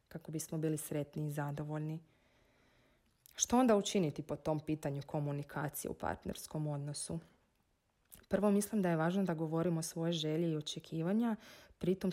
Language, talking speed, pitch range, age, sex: Croatian, 140 wpm, 155-180 Hz, 30-49, female